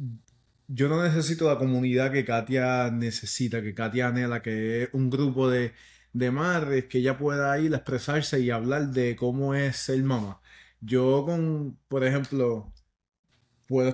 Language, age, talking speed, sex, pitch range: English, 30-49, 155 wpm, male, 115-135 Hz